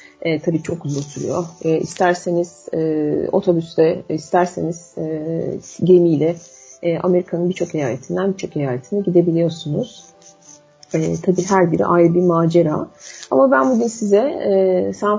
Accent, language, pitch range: native, Turkish, 165-190 Hz